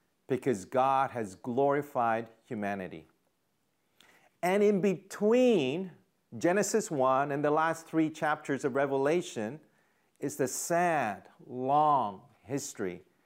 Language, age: English, 40-59